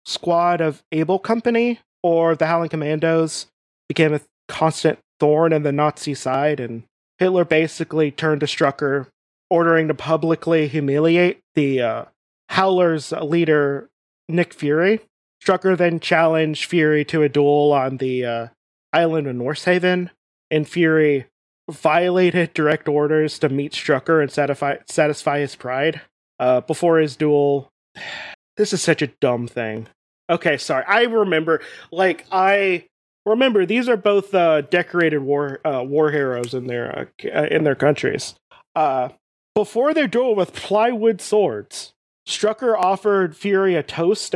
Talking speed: 140 wpm